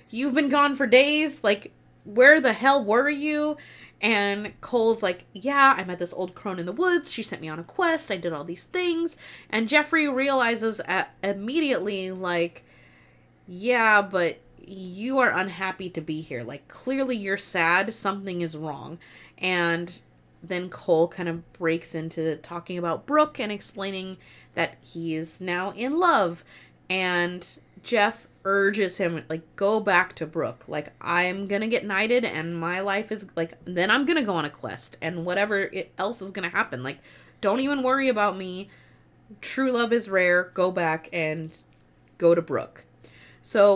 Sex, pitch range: female, 170-255 Hz